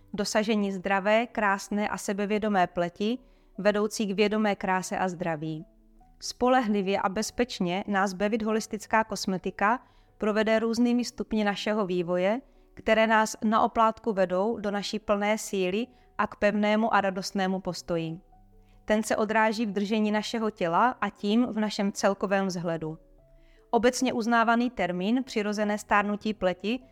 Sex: female